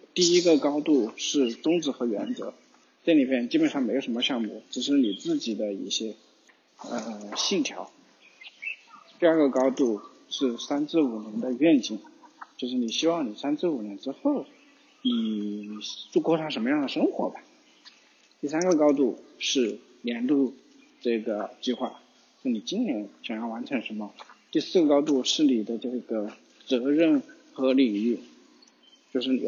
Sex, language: male, Chinese